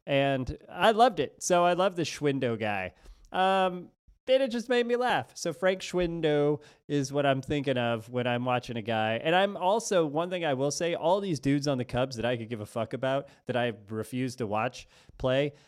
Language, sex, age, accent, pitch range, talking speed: English, male, 30-49, American, 130-195 Hz, 220 wpm